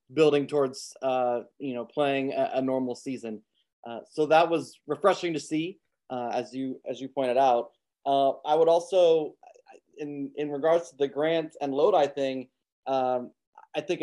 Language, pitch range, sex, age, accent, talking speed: English, 130-155 Hz, male, 20-39, American, 170 wpm